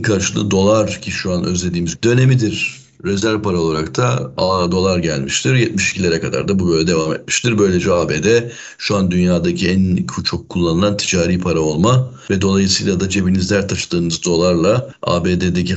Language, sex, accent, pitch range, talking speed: Turkish, male, native, 85-110 Hz, 145 wpm